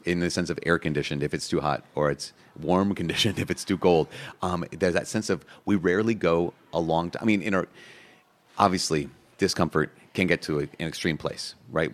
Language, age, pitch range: English, 30-49, 80-100 Hz